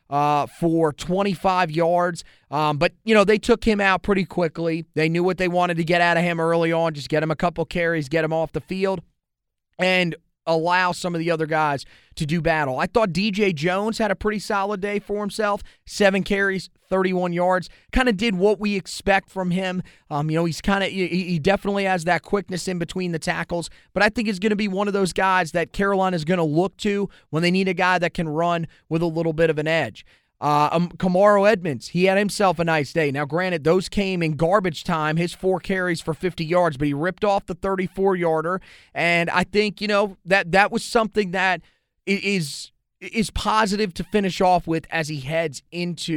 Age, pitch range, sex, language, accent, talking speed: 30-49, 165-195 Hz, male, English, American, 220 wpm